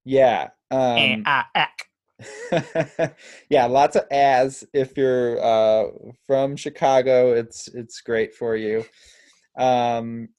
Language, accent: English, American